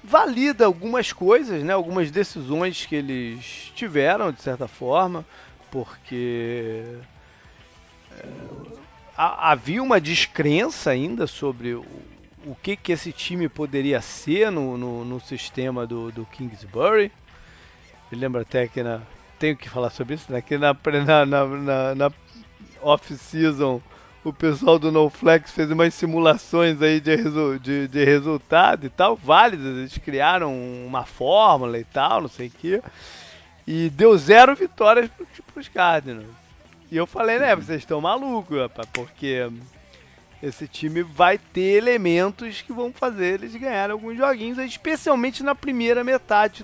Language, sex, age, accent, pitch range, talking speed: Portuguese, male, 40-59, Brazilian, 125-210 Hz, 140 wpm